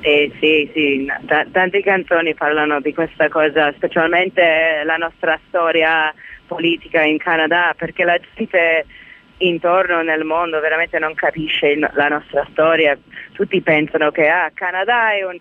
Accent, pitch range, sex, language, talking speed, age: native, 155-190 Hz, female, Italian, 145 wpm, 30-49